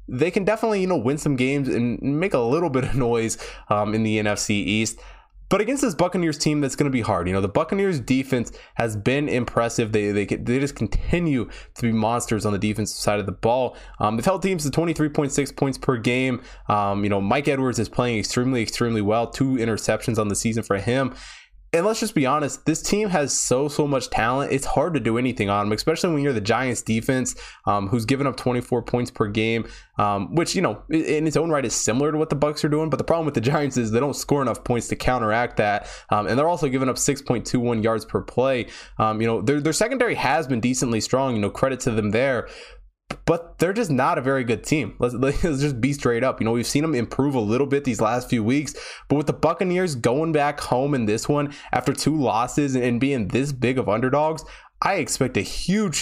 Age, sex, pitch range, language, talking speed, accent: 20-39, male, 110-145 Hz, English, 235 wpm, American